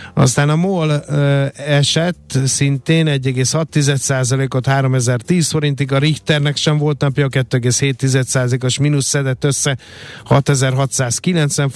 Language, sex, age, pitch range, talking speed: Hungarian, male, 50-69, 120-140 Hz, 90 wpm